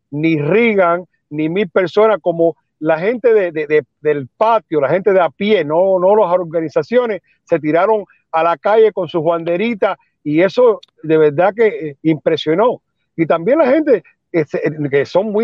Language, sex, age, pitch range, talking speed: English, male, 50-69, 160-210 Hz, 165 wpm